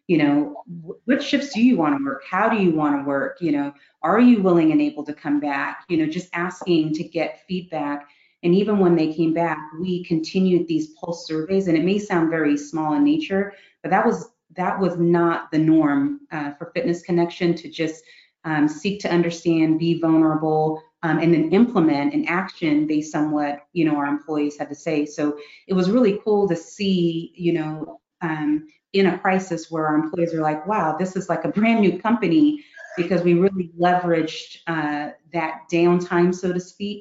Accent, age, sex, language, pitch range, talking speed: American, 30-49, female, English, 155-185 Hz, 195 wpm